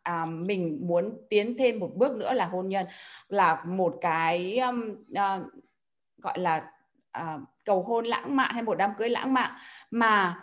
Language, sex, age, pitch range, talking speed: Vietnamese, female, 20-39, 205-270 Hz, 175 wpm